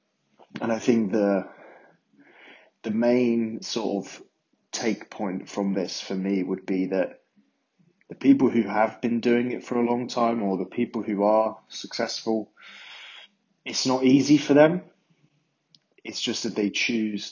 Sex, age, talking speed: male, 20-39, 150 wpm